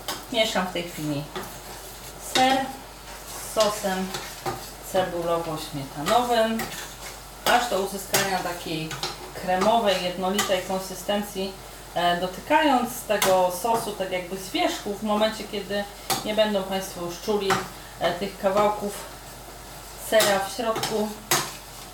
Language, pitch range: Polish, 175-205 Hz